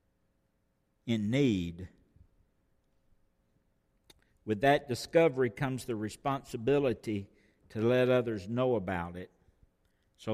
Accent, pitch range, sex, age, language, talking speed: American, 105-155 Hz, male, 60-79, English, 85 wpm